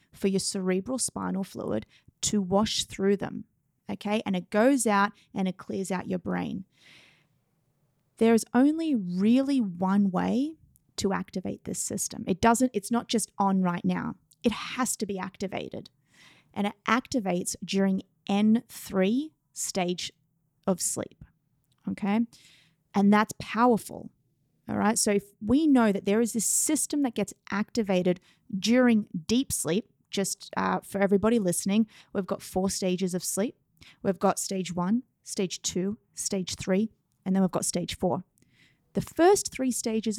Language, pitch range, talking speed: English, 185-225 Hz, 150 wpm